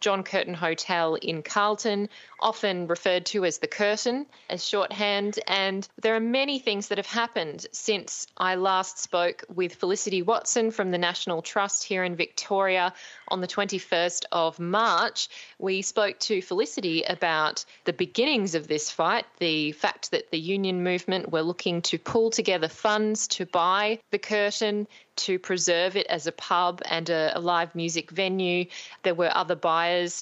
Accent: Australian